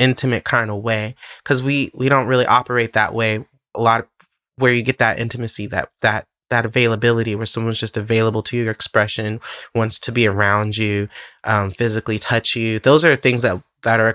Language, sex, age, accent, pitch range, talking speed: English, male, 20-39, American, 115-135 Hz, 195 wpm